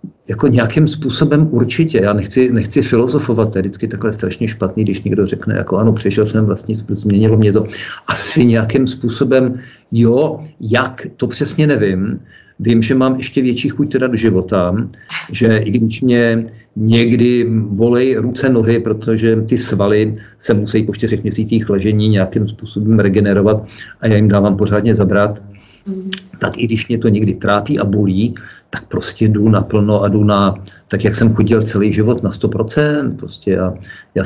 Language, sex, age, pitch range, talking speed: Czech, male, 50-69, 105-120 Hz, 165 wpm